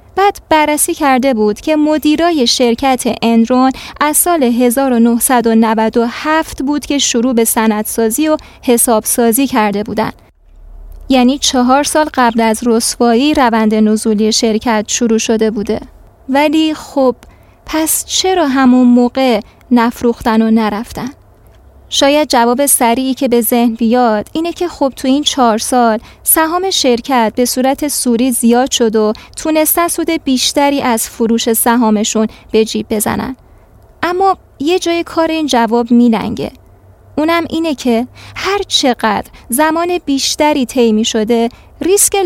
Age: 20-39